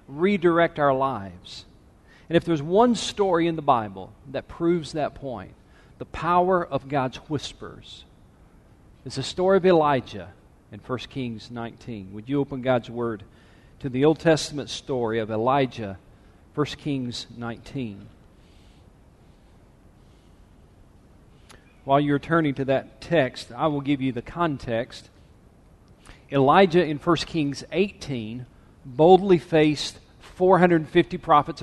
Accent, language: American, English